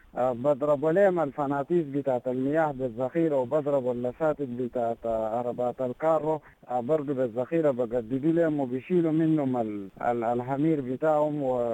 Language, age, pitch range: English, 50-69, 135-175 Hz